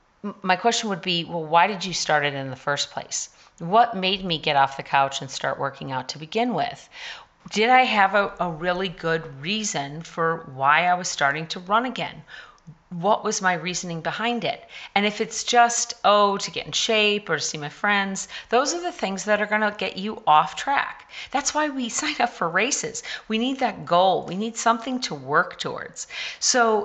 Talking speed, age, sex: 210 wpm, 40-59, female